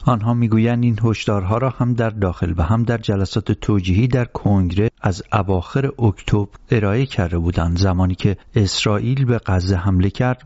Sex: male